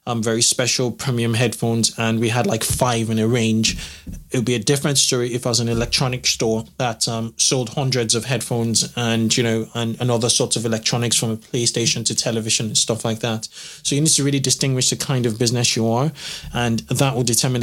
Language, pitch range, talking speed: English, 115-135 Hz, 220 wpm